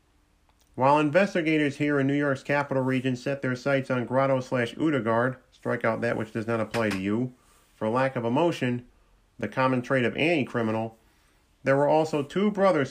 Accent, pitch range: American, 120-145 Hz